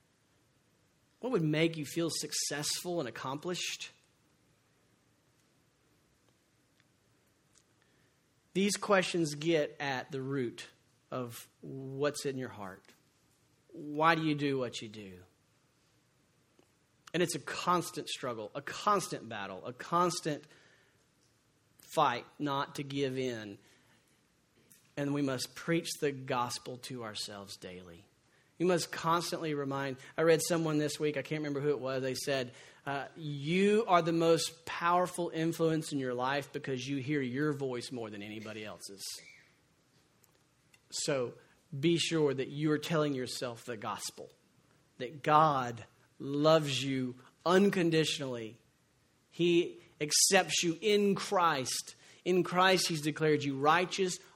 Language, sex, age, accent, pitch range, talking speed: English, male, 40-59, American, 130-165 Hz, 125 wpm